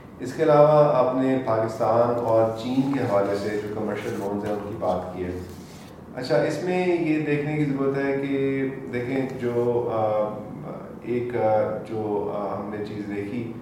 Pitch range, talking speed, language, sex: 105-120 Hz, 165 wpm, Urdu, male